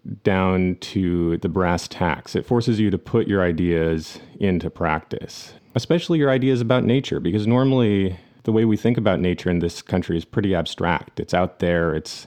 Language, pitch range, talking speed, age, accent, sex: English, 90-115 Hz, 180 wpm, 30-49, American, male